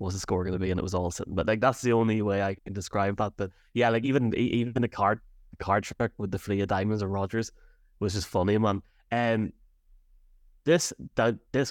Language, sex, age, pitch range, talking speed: English, male, 20-39, 95-115 Hz, 230 wpm